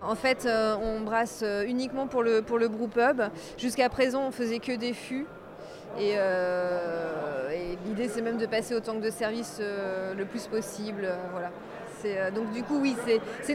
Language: French